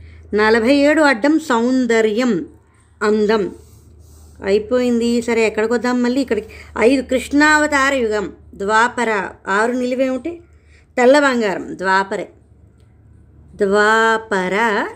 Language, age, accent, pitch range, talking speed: Telugu, 20-39, native, 210-275 Hz, 85 wpm